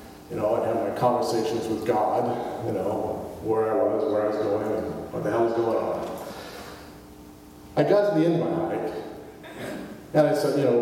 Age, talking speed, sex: 40-59, 205 wpm, male